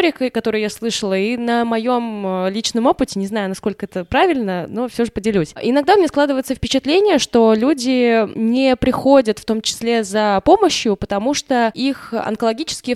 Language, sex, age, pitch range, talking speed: Russian, female, 20-39, 205-260 Hz, 155 wpm